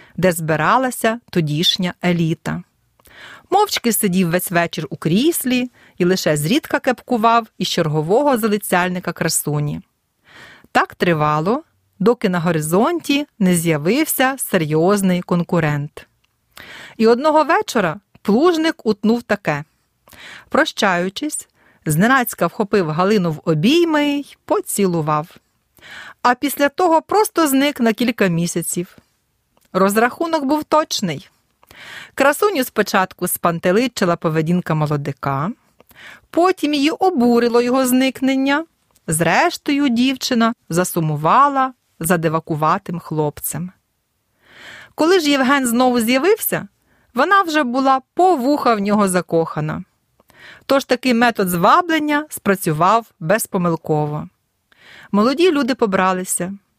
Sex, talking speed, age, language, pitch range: female, 95 wpm, 40-59, Ukrainian, 175-270 Hz